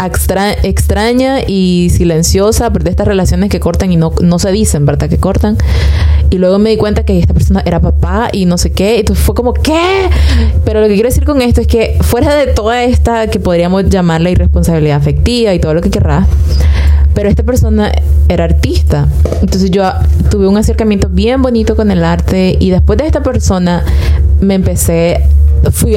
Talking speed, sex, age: 190 wpm, female, 20-39